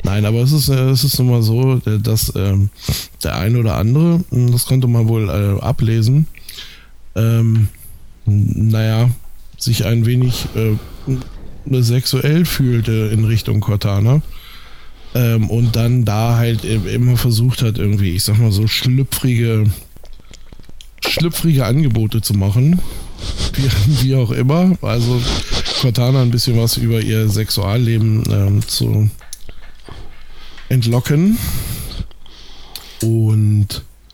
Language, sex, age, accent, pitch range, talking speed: German, male, 20-39, German, 110-125 Hz, 120 wpm